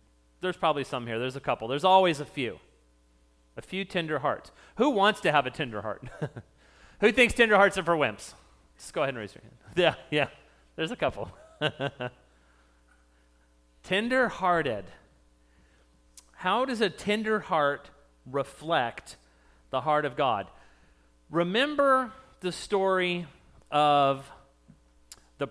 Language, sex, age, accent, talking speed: English, male, 40-59, American, 135 wpm